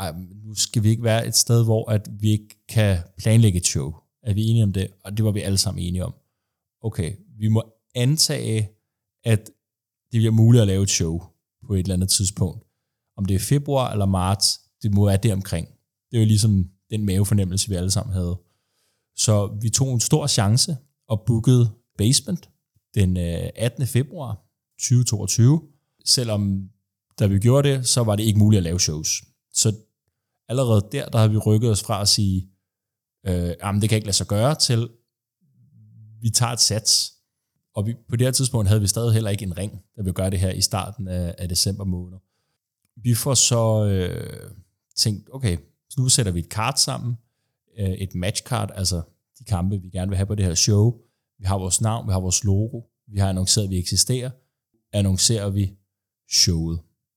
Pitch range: 95-120 Hz